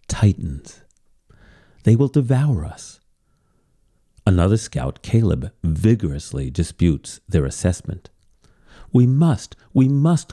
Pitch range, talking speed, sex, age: 85-135 Hz, 95 wpm, male, 40-59